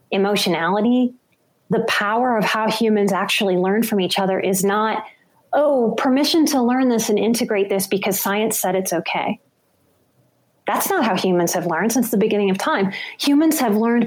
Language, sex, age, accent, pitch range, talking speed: English, female, 30-49, American, 195-240 Hz, 170 wpm